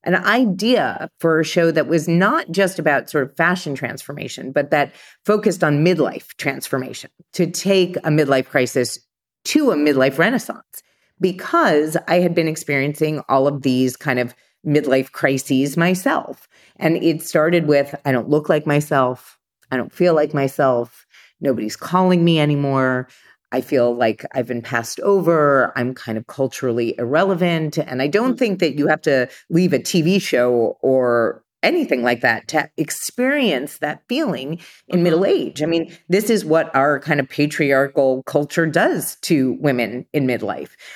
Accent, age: American, 30-49